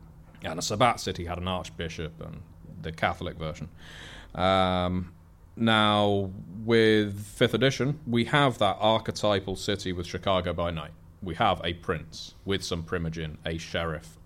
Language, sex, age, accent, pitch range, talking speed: English, male, 30-49, British, 90-110 Hz, 145 wpm